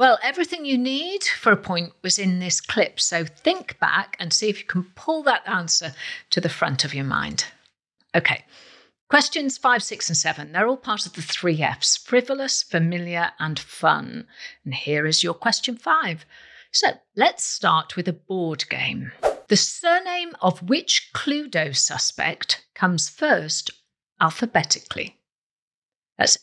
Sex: female